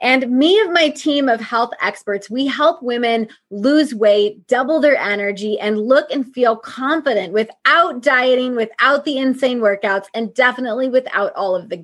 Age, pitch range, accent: 20-39, 220-285 Hz, American